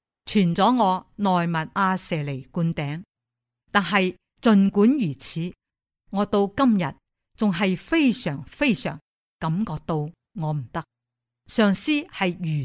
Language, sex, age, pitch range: Chinese, female, 50-69, 150-205 Hz